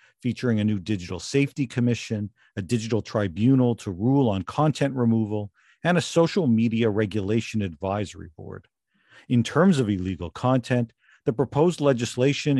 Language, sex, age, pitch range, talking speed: English, male, 50-69, 100-140 Hz, 140 wpm